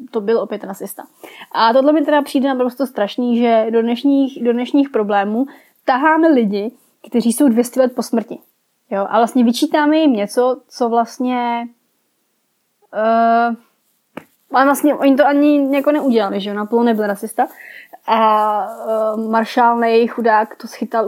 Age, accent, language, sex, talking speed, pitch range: 20-39, native, Czech, female, 140 wpm, 225-260 Hz